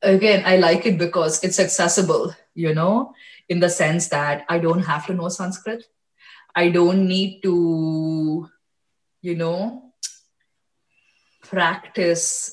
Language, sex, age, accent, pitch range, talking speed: English, female, 20-39, Indian, 160-200 Hz, 125 wpm